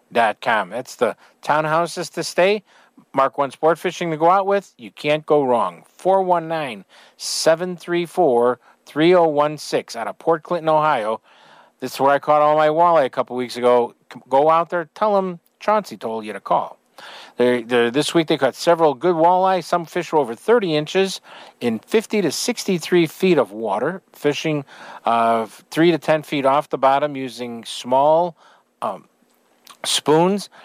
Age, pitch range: 50-69, 125-175 Hz